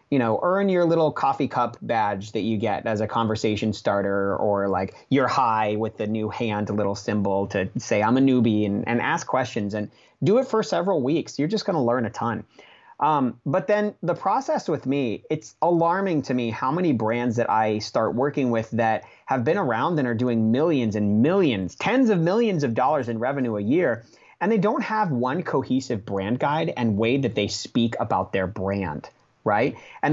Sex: male